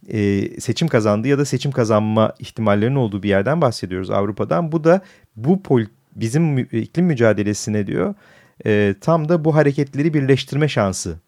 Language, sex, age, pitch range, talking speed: Turkish, male, 40-59, 100-145 Hz, 150 wpm